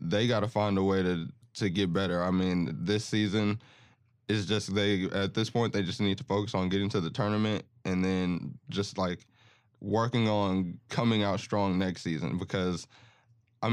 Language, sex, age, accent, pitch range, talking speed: English, male, 20-39, American, 95-115 Hz, 190 wpm